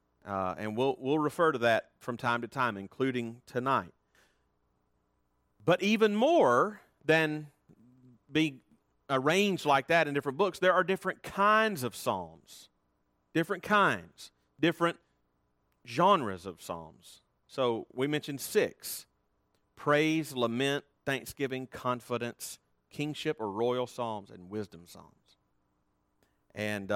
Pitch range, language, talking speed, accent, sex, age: 95-145 Hz, English, 115 wpm, American, male, 40-59